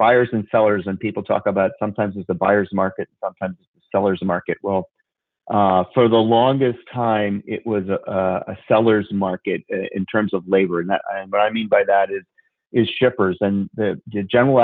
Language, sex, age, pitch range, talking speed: English, male, 40-59, 100-120 Hz, 195 wpm